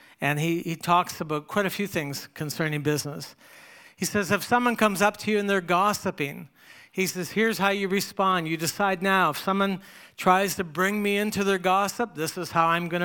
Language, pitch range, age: English, 165-200 Hz, 60-79